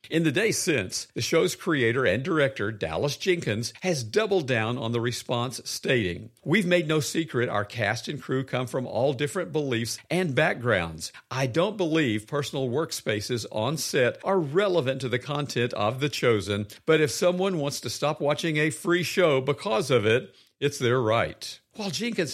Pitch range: 120-160 Hz